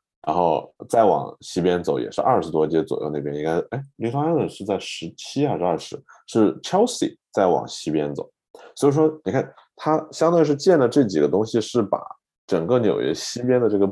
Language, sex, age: Chinese, male, 20-39